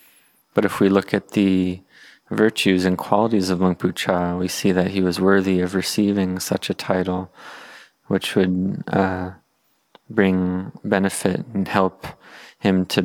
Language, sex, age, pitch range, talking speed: English, male, 20-39, 90-100 Hz, 145 wpm